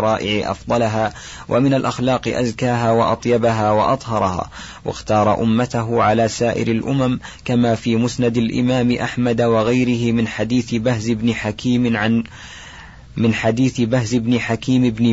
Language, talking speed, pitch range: Arabic, 120 wpm, 110-120 Hz